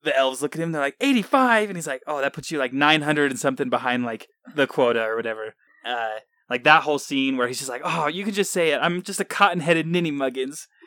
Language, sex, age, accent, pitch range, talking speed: English, male, 20-39, American, 120-165 Hz, 250 wpm